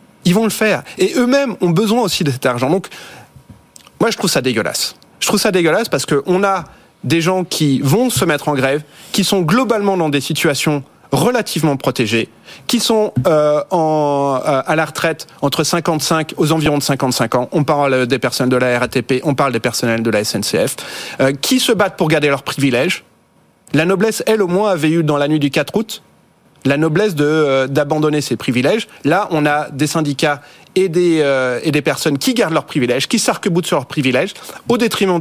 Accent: French